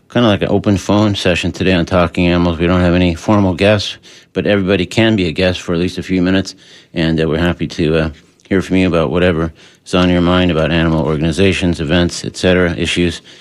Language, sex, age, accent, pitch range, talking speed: English, male, 50-69, American, 90-105 Hz, 225 wpm